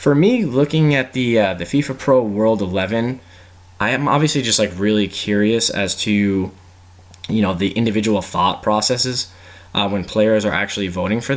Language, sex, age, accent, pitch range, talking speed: English, male, 10-29, American, 95-110 Hz, 175 wpm